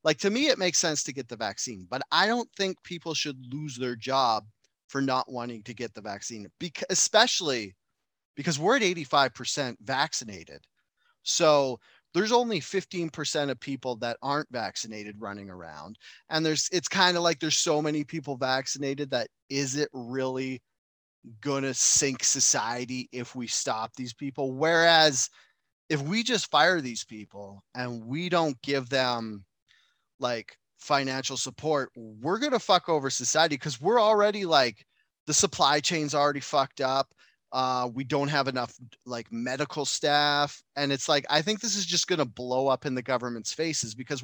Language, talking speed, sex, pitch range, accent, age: English, 170 wpm, male, 125-160 Hz, American, 30-49